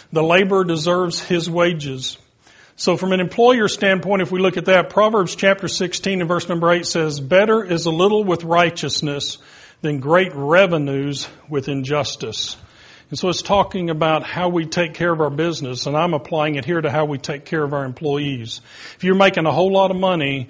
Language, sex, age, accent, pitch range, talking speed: English, male, 40-59, American, 145-180 Hz, 195 wpm